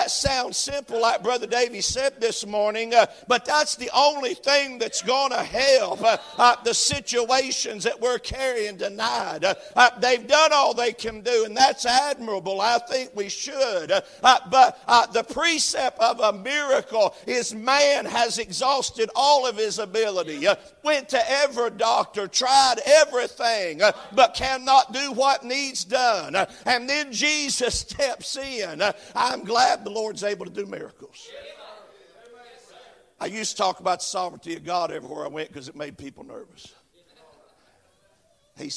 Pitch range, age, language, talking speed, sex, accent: 190-270 Hz, 50-69, English, 160 wpm, male, American